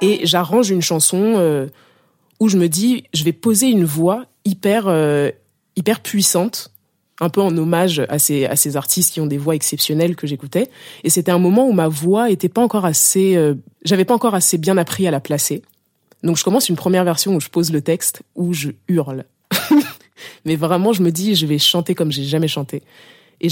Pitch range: 150-190 Hz